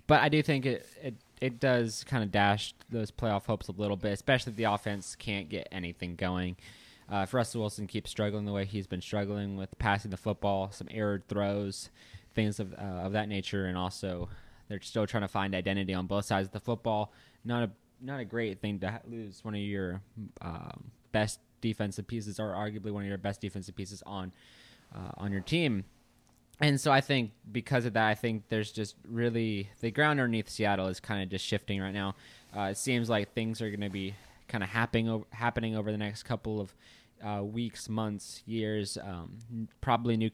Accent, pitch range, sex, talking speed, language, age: American, 100-115 Hz, male, 210 wpm, English, 20-39